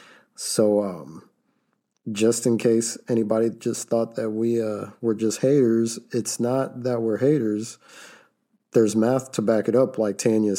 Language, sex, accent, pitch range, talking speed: English, male, American, 100-125 Hz, 155 wpm